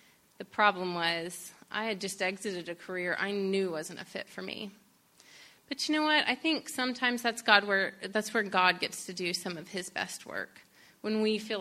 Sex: female